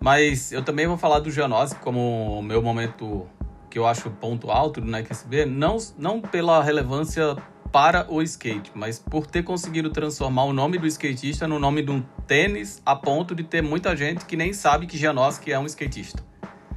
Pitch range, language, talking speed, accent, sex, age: 115-160 Hz, Portuguese, 195 wpm, Brazilian, male, 20-39